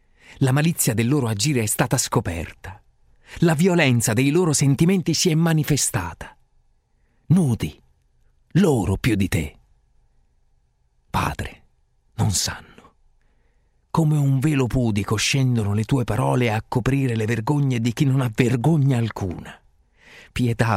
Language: Italian